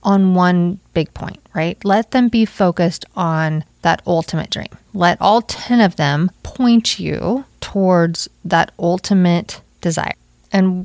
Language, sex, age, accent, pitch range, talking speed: English, female, 30-49, American, 170-205 Hz, 140 wpm